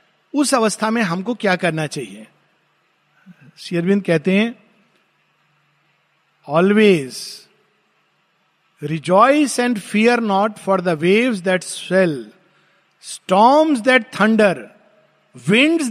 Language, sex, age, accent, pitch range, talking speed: Hindi, male, 50-69, native, 185-240 Hz, 90 wpm